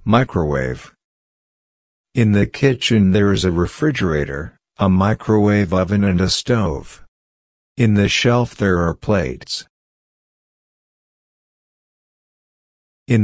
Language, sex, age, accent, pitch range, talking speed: English, male, 50-69, American, 85-110 Hz, 95 wpm